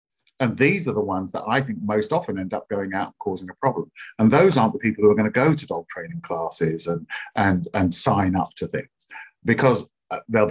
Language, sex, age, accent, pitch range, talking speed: English, male, 50-69, British, 95-130 Hz, 240 wpm